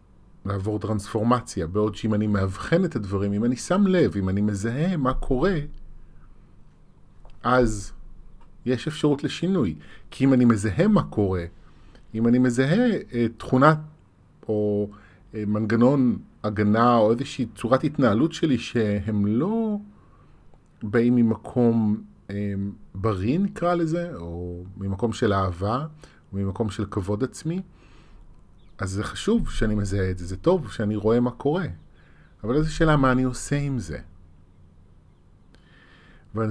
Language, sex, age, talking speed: Hebrew, male, 30-49, 125 wpm